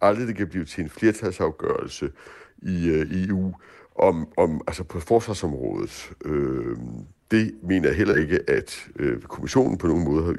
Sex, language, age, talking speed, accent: male, Danish, 60-79, 170 wpm, native